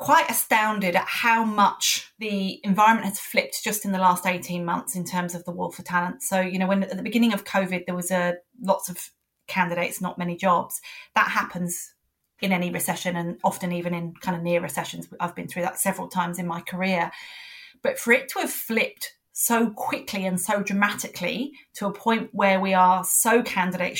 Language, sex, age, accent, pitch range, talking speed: English, female, 30-49, British, 180-220 Hz, 205 wpm